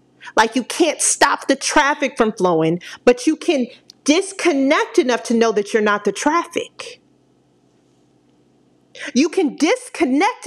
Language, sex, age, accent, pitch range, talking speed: English, female, 40-59, American, 210-310 Hz, 130 wpm